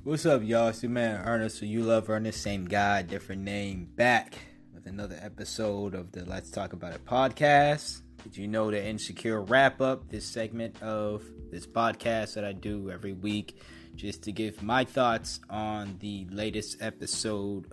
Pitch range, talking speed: 100-130 Hz, 175 wpm